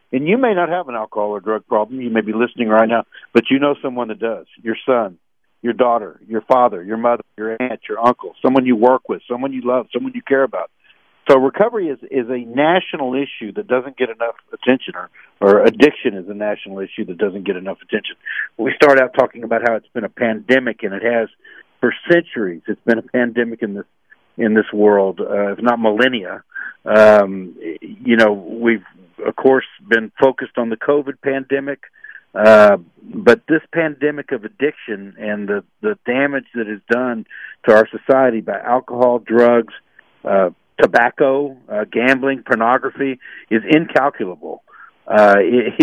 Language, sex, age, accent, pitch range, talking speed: English, male, 60-79, American, 115-150 Hz, 175 wpm